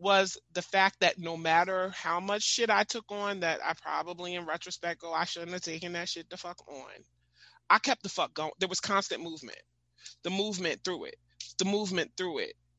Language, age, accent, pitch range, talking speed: English, 30-49, American, 160-220 Hz, 205 wpm